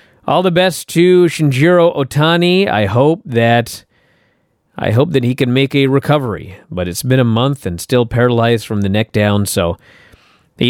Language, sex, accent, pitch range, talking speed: English, male, American, 95-130 Hz, 175 wpm